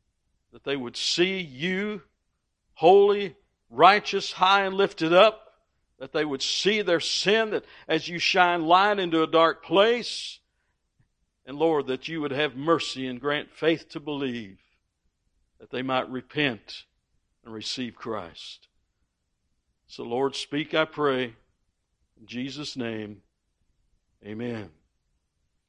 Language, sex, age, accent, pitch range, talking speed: English, male, 60-79, American, 120-190 Hz, 125 wpm